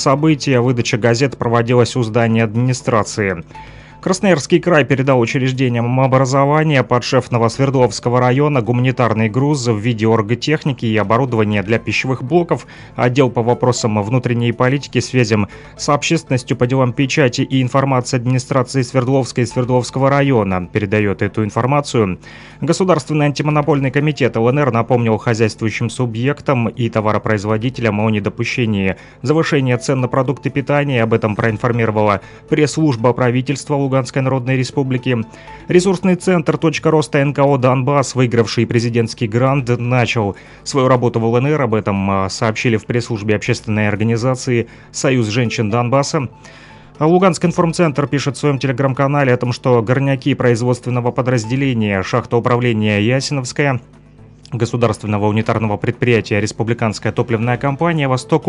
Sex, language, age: male, Russian, 30-49